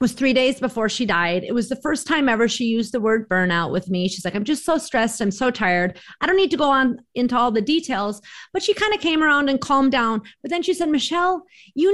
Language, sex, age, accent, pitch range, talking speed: English, female, 30-49, American, 225-305 Hz, 265 wpm